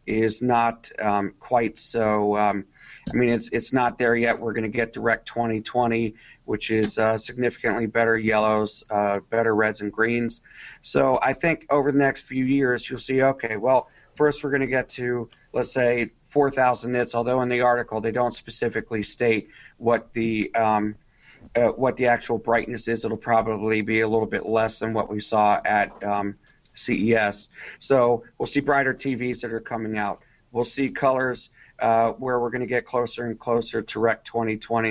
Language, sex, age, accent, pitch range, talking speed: English, male, 40-59, American, 110-125 Hz, 185 wpm